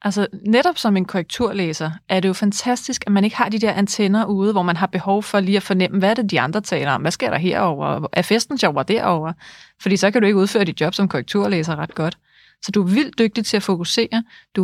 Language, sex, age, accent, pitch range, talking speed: Danish, female, 30-49, native, 180-220 Hz, 250 wpm